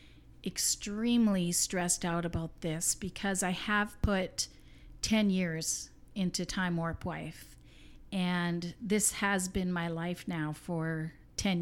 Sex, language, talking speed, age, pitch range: female, English, 125 wpm, 50-69, 170-200 Hz